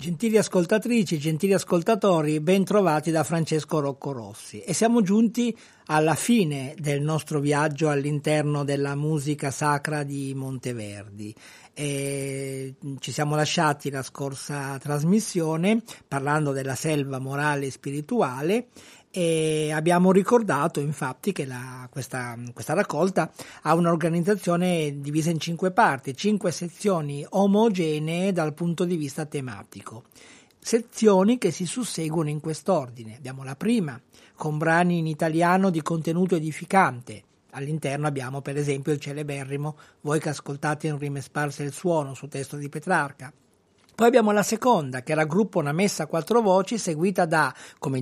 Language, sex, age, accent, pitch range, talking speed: Italian, male, 50-69, native, 140-190 Hz, 135 wpm